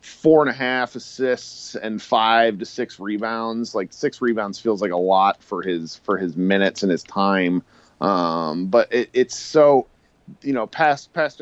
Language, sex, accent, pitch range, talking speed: English, male, American, 105-130 Hz, 175 wpm